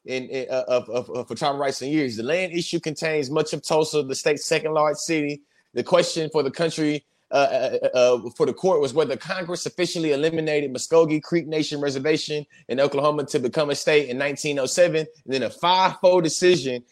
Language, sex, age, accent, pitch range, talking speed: English, male, 30-49, American, 145-185 Hz, 190 wpm